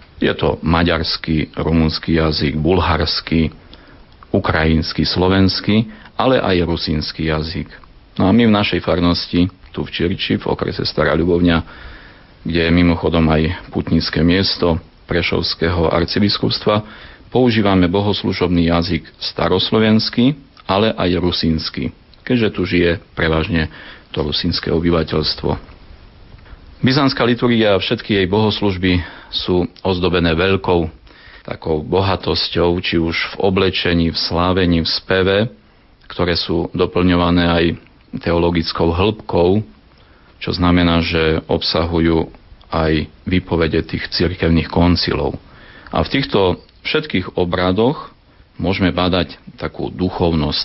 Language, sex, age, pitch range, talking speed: Slovak, male, 40-59, 80-95 Hz, 105 wpm